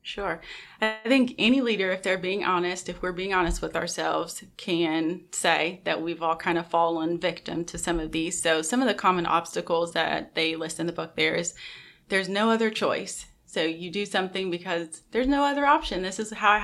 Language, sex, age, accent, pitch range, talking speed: English, female, 30-49, American, 165-195 Hz, 215 wpm